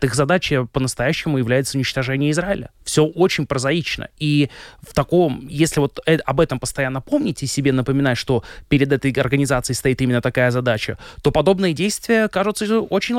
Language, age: Russian, 20-39